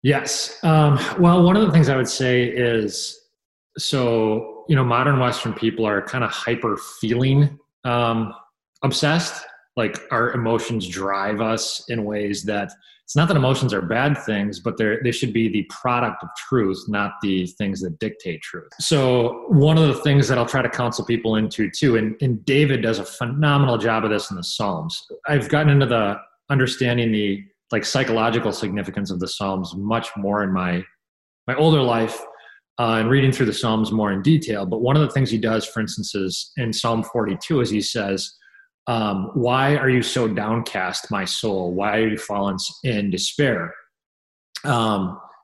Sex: male